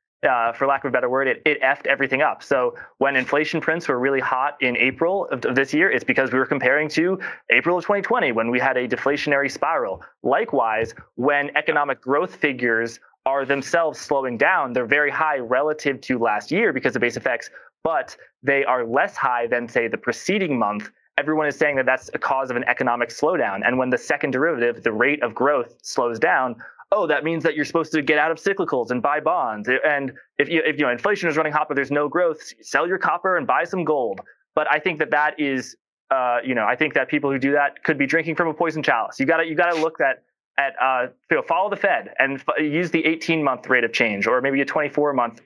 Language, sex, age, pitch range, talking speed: English, male, 20-39, 125-155 Hz, 235 wpm